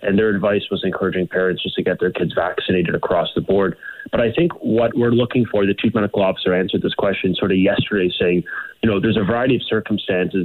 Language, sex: English, male